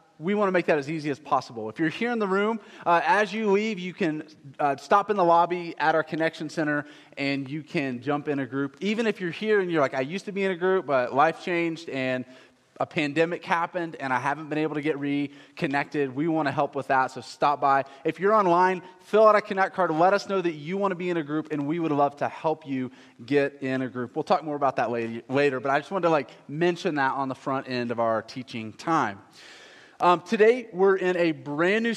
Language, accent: English, American